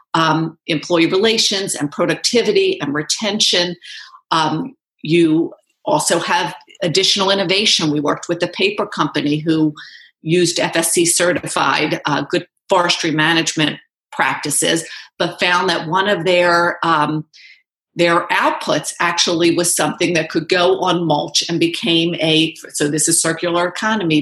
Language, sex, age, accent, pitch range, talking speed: English, female, 50-69, American, 155-185 Hz, 130 wpm